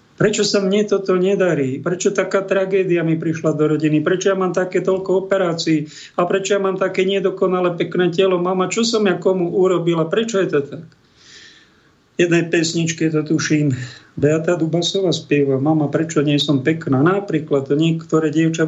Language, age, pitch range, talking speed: Slovak, 50-69, 140-175 Hz, 170 wpm